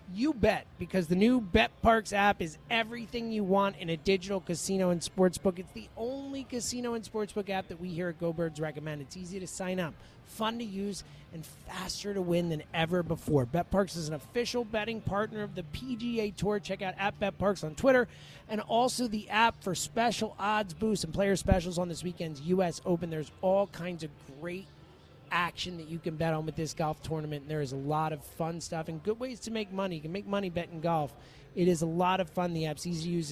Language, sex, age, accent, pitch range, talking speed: English, male, 30-49, American, 170-220 Hz, 230 wpm